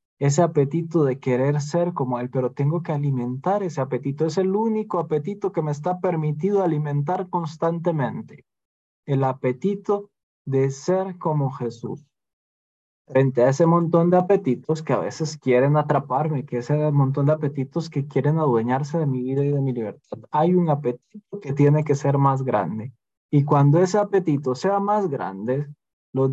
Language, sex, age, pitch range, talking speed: Spanish, male, 20-39, 130-170 Hz, 165 wpm